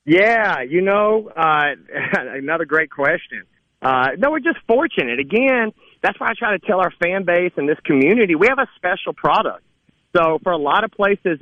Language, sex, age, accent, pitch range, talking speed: English, male, 40-59, American, 140-180 Hz, 190 wpm